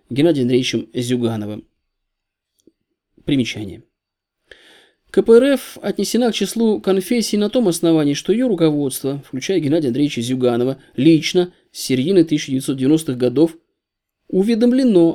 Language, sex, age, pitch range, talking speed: Russian, male, 20-39, 130-180 Hz, 100 wpm